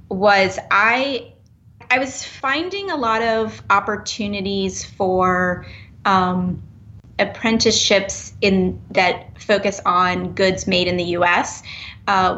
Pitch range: 180-205 Hz